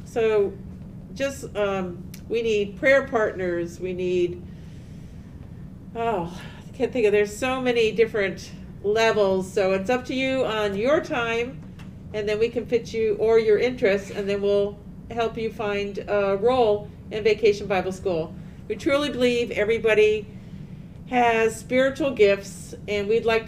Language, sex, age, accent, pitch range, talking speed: English, female, 50-69, American, 185-225 Hz, 150 wpm